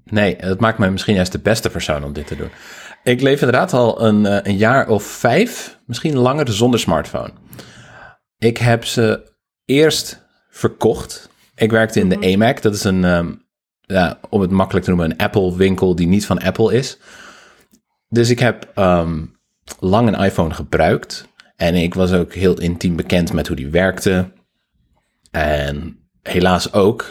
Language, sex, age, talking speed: Dutch, male, 30-49, 160 wpm